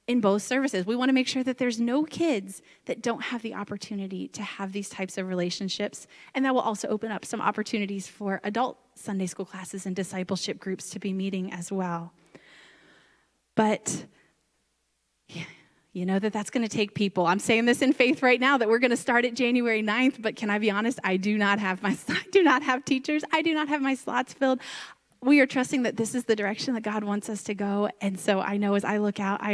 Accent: American